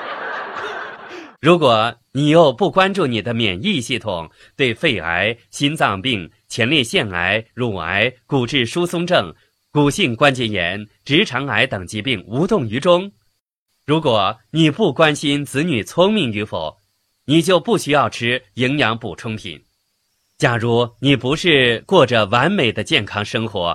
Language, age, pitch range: Chinese, 30-49, 105-150 Hz